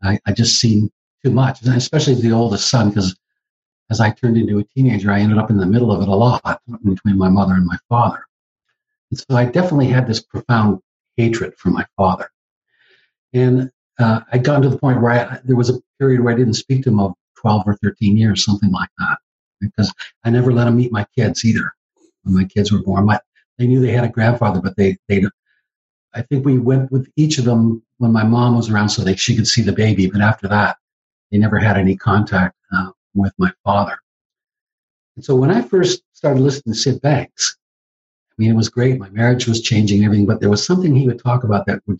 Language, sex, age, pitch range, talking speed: English, male, 60-79, 105-125 Hz, 225 wpm